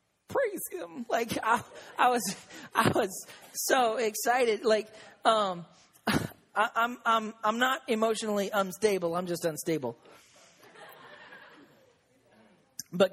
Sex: male